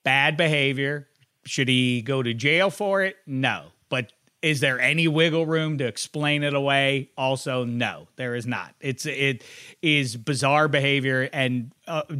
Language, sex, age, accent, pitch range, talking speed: English, male, 30-49, American, 130-180 Hz, 155 wpm